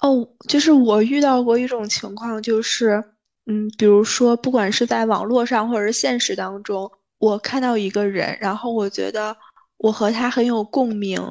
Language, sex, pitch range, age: Chinese, female, 220-265 Hz, 20-39